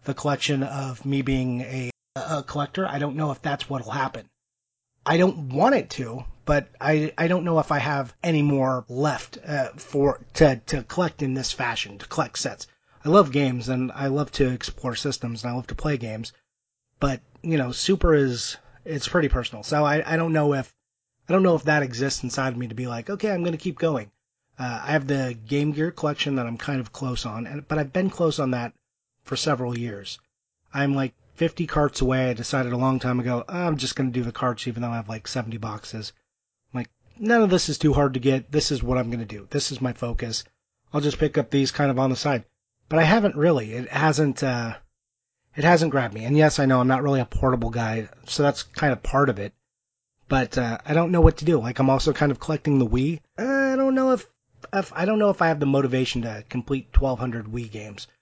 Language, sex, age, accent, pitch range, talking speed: English, male, 30-49, American, 125-150 Hz, 240 wpm